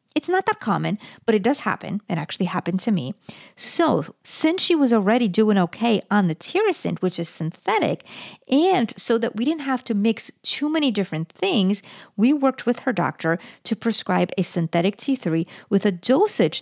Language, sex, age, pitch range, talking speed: English, female, 50-69, 175-235 Hz, 185 wpm